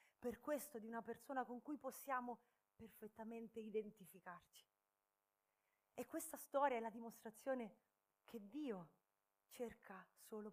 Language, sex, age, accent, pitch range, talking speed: Italian, female, 30-49, native, 180-255 Hz, 115 wpm